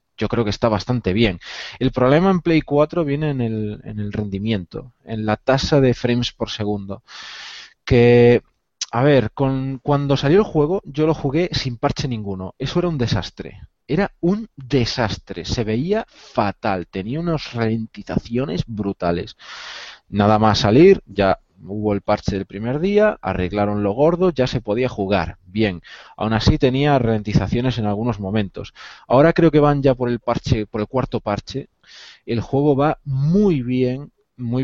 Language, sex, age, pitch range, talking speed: Spanish, male, 20-39, 105-135 Hz, 165 wpm